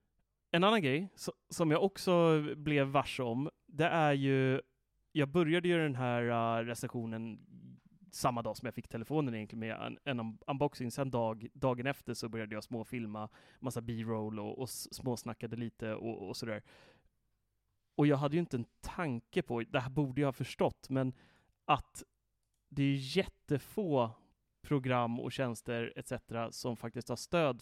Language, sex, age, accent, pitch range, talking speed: English, male, 30-49, Swedish, 115-145 Hz, 160 wpm